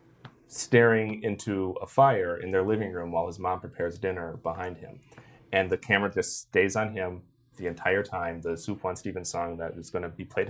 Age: 30-49